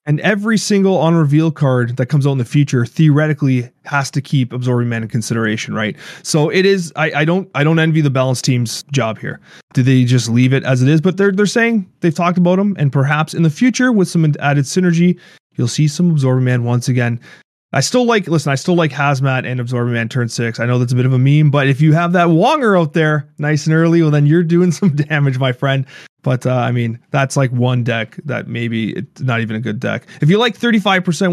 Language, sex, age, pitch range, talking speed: English, male, 20-39, 130-180 Hz, 245 wpm